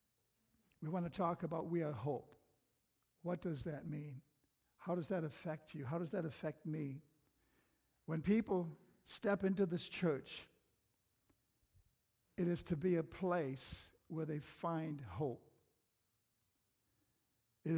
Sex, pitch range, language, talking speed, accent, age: male, 140-170 Hz, English, 130 wpm, American, 60-79